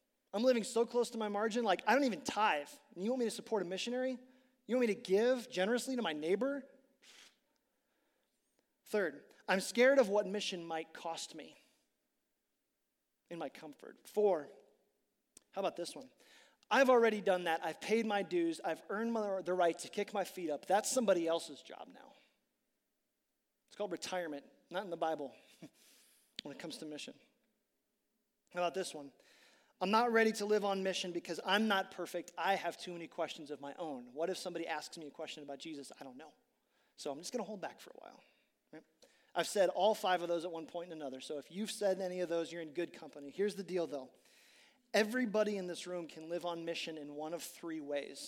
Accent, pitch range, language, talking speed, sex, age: American, 165-225 Hz, English, 205 wpm, male, 30-49